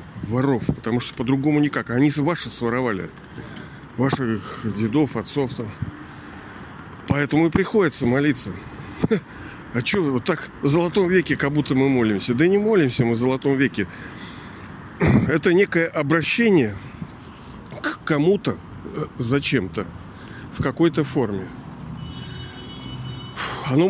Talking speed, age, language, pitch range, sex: 110 wpm, 50-69, Russian, 115-140 Hz, male